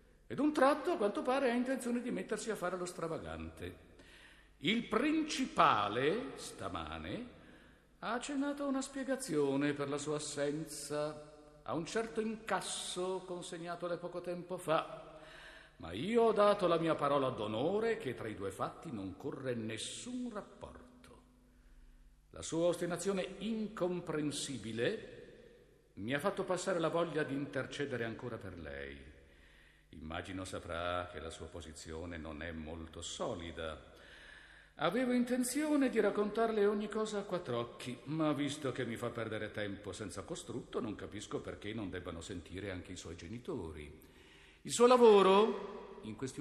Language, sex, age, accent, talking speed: Italian, male, 60-79, native, 140 wpm